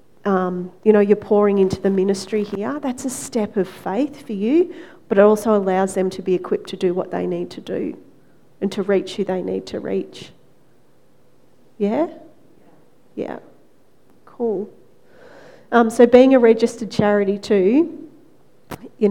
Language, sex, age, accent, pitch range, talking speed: English, female, 40-59, Australian, 190-210 Hz, 155 wpm